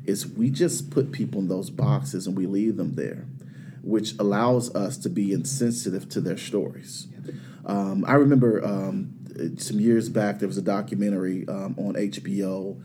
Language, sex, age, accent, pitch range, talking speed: English, male, 40-59, American, 95-115 Hz, 170 wpm